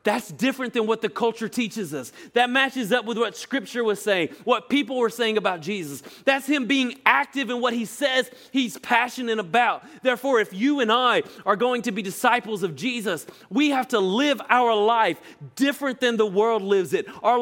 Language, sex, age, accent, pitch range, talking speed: English, male, 30-49, American, 145-245 Hz, 200 wpm